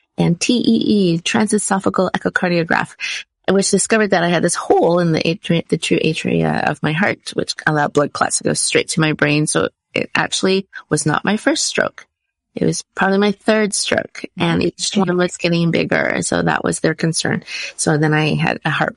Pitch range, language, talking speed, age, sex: 165-200 Hz, English, 190 wpm, 30-49, female